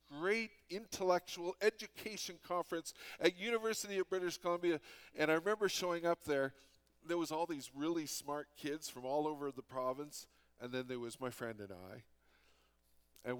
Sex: male